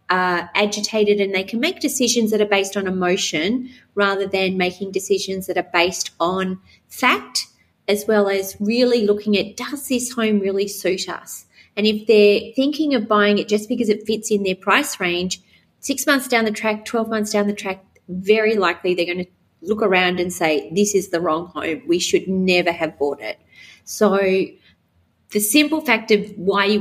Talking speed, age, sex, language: 190 wpm, 30-49, female, English